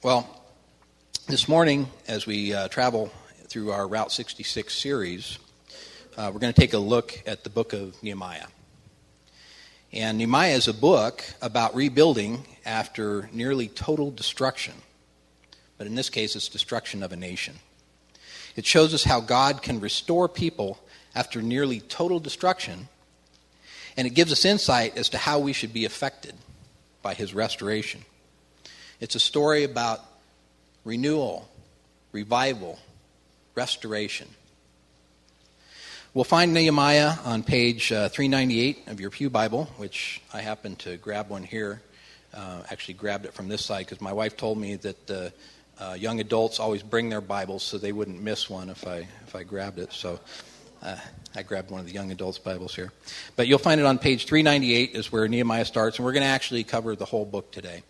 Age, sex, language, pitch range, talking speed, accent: 40-59, male, English, 95-125 Hz, 165 wpm, American